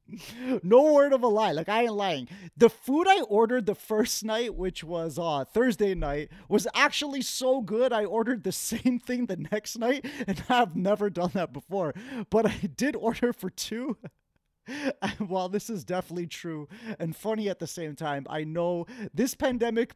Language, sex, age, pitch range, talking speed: English, male, 30-49, 185-245 Hz, 180 wpm